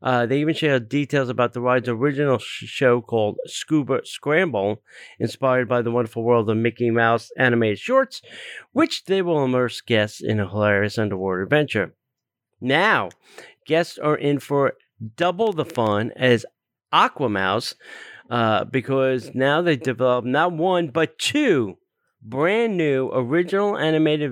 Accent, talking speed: American, 140 wpm